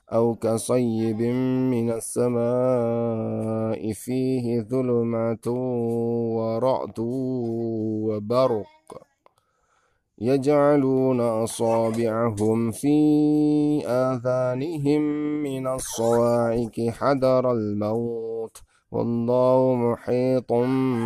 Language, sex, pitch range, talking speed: Indonesian, male, 110-130 Hz, 50 wpm